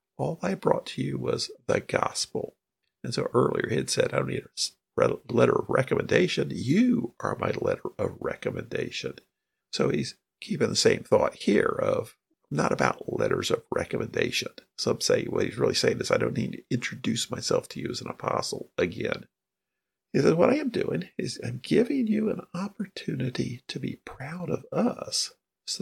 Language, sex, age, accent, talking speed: English, male, 50-69, American, 180 wpm